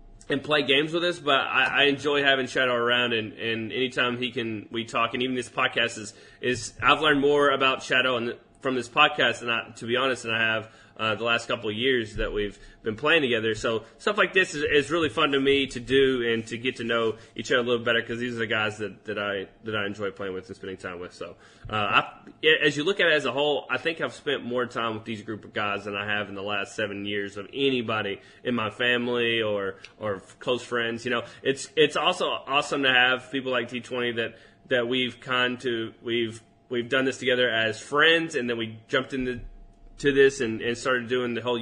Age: 20-39